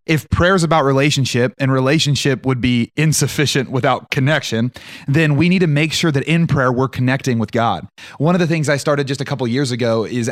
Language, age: English, 30-49